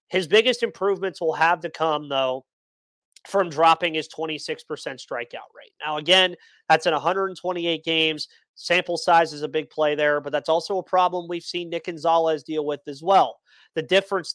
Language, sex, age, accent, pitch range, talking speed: English, male, 30-49, American, 150-190 Hz, 175 wpm